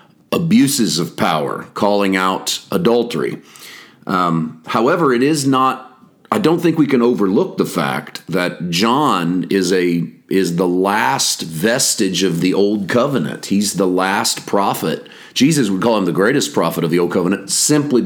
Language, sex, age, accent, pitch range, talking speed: English, male, 40-59, American, 90-120 Hz, 155 wpm